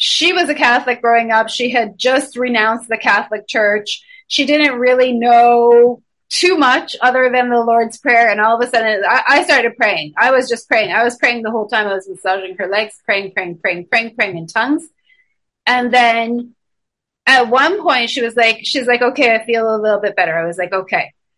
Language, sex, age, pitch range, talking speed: English, female, 30-49, 215-265 Hz, 215 wpm